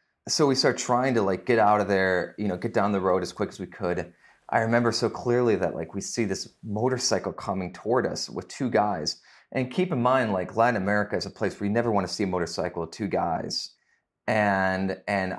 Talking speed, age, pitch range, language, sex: 235 wpm, 30-49, 95-115 Hz, English, male